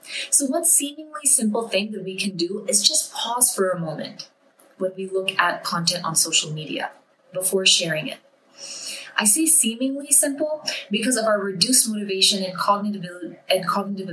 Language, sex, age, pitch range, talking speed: English, female, 20-39, 185-255 Hz, 155 wpm